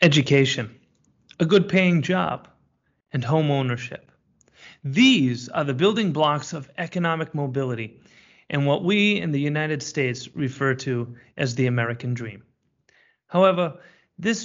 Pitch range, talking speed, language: 135-185 Hz, 130 wpm, English